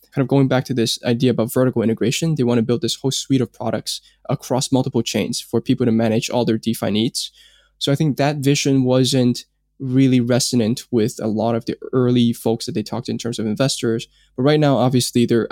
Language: English